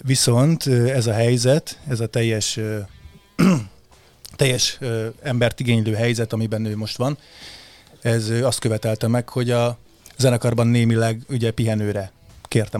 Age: 30-49